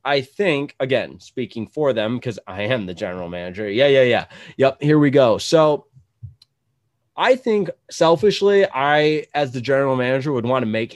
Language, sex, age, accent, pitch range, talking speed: English, male, 20-39, American, 120-155 Hz, 175 wpm